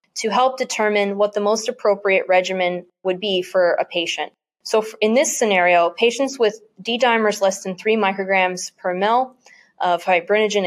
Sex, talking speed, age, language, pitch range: female, 160 wpm, 20-39, English, 185-225 Hz